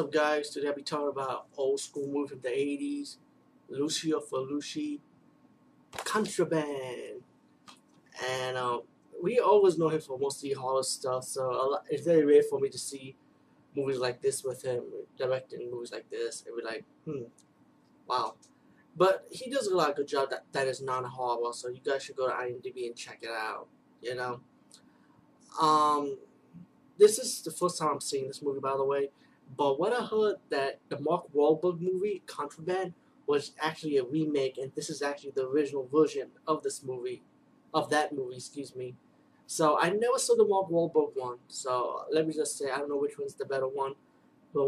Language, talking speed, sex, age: English, 190 wpm, male, 20-39